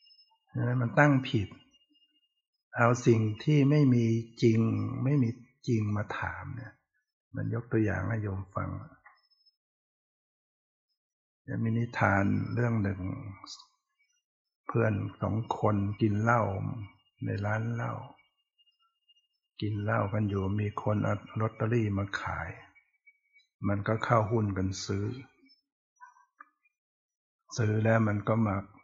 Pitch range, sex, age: 105-130 Hz, male, 60-79